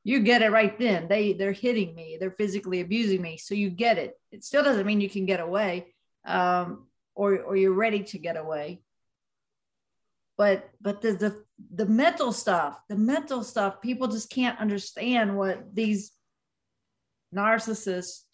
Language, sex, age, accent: English, female, 50-69, American